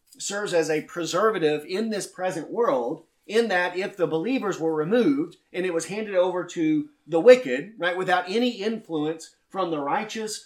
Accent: American